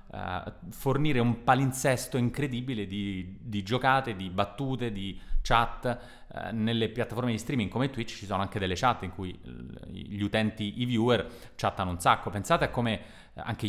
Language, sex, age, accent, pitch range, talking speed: Italian, male, 30-49, native, 95-120 Hz, 160 wpm